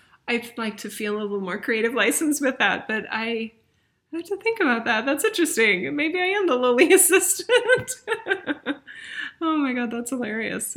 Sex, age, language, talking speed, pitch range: female, 30-49, English, 175 wpm, 180-230 Hz